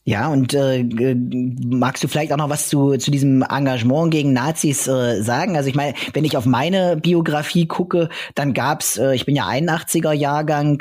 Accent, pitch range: German, 130-150 Hz